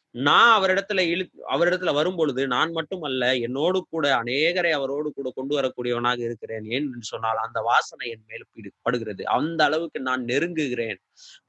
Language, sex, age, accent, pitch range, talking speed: Tamil, male, 30-49, native, 125-160 Hz, 110 wpm